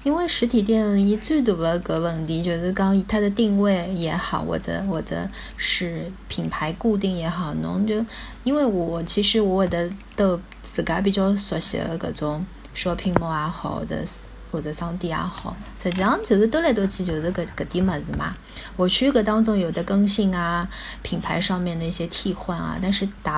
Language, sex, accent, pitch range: Chinese, female, native, 175-215 Hz